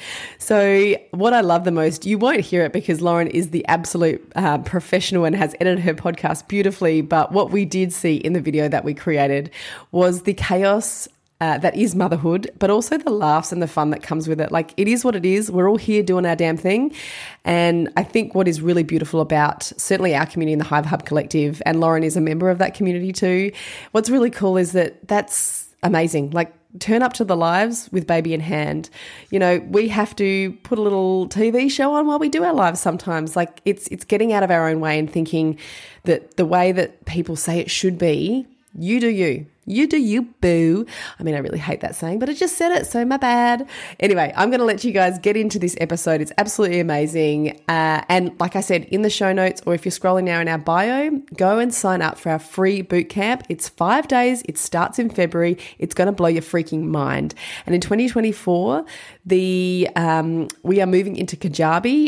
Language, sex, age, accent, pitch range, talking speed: English, female, 20-39, Australian, 165-205 Hz, 220 wpm